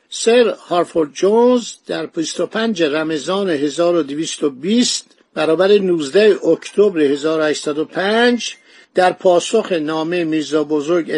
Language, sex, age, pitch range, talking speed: Persian, male, 50-69, 170-220 Hz, 85 wpm